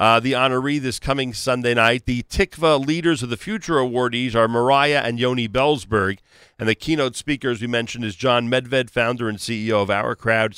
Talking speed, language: 200 wpm, English